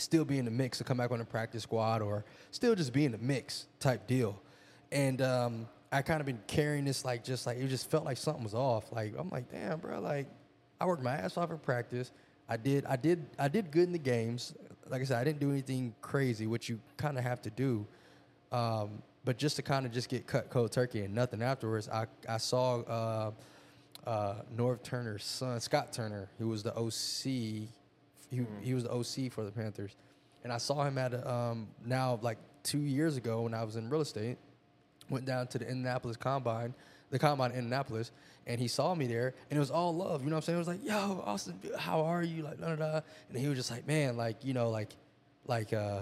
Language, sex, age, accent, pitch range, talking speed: English, male, 20-39, American, 115-140 Hz, 230 wpm